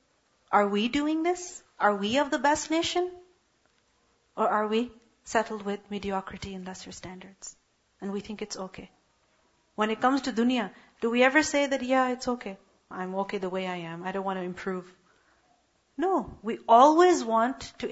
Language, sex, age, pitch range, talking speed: English, female, 40-59, 225-300 Hz, 180 wpm